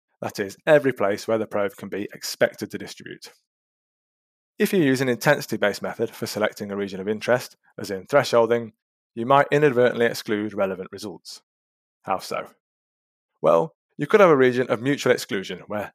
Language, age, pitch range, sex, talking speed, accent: English, 20-39, 105-130 Hz, male, 170 wpm, British